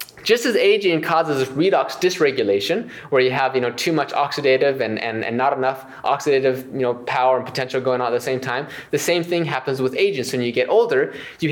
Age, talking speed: 20-39, 225 wpm